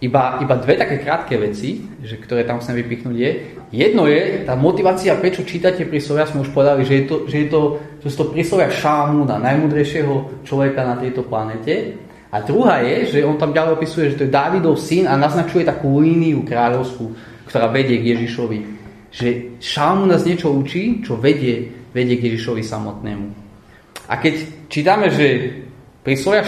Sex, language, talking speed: male, Slovak, 170 wpm